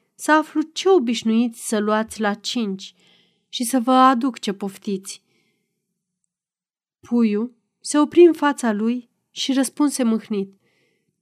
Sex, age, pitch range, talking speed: female, 30-49, 190-260 Hz, 125 wpm